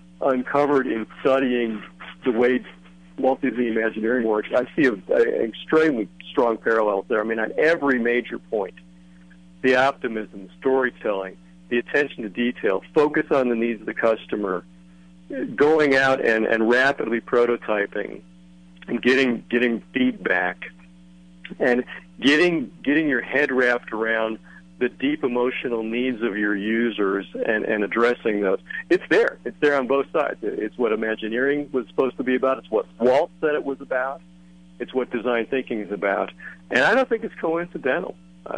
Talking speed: 155 wpm